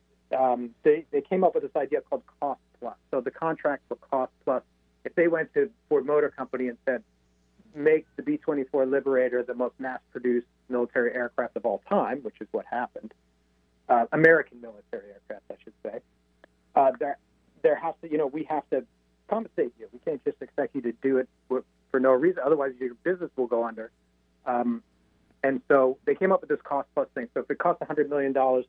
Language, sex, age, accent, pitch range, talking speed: English, male, 40-59, American, 120-160 Hz, 205 wpm